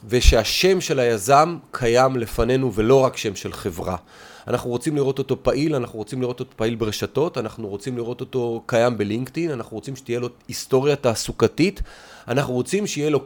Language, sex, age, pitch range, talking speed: Hebrew, male, 30-49, 120-160 Hz, 170 wpm